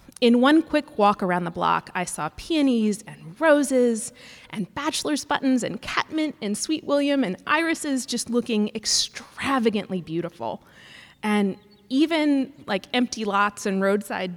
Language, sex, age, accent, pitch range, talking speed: English, female, 20-39, American, 190-270 Hz, 140 wpm